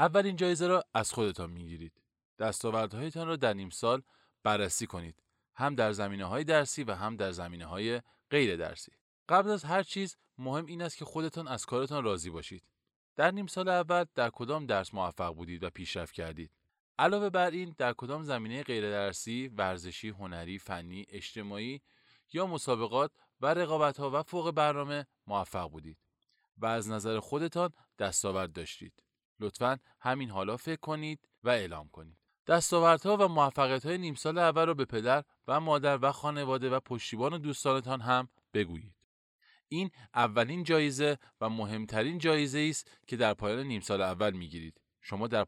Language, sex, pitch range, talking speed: Persian, male, 100-155 Hz, 160 wpm